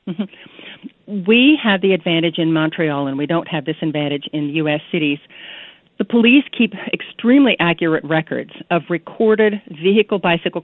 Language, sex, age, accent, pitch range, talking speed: English, female, 50-69, American, 155-185 Hz, 150 wpm